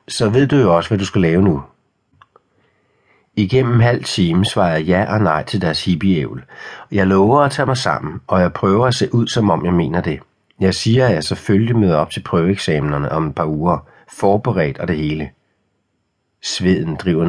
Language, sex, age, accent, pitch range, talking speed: Danish, male, 60-79, native, 90-105 Hz, 200 wpm